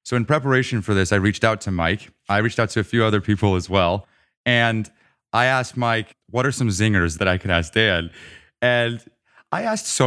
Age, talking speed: 30-49, 220 wpm